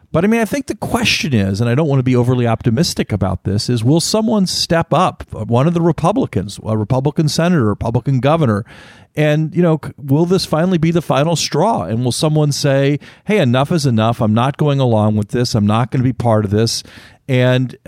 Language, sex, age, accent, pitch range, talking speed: English, male, 50-69, American, 110-150 Hz, 220 wpm